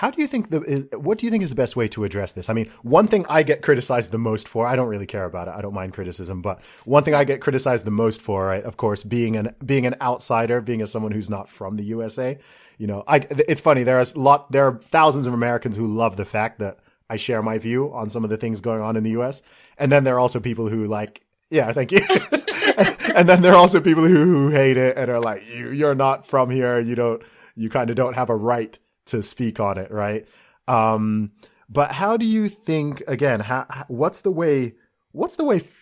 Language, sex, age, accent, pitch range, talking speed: English, male, 30-49, American, 105-135 Hz, 255 wpm